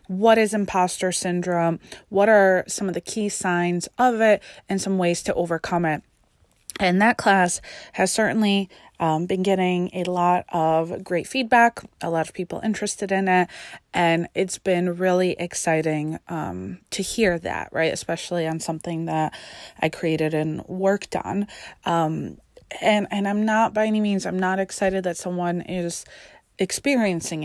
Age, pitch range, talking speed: 20-39, 170-200 Hz, 160 wpm